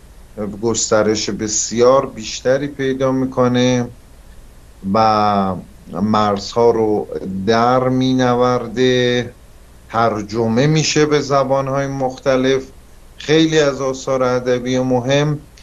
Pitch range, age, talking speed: 105-125 Hz, 50-69, 75 wpm